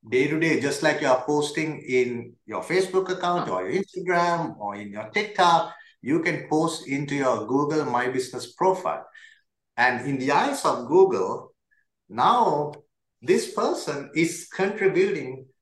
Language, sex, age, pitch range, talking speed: English, male, 50-69, 135-195 Hz, 150 wpm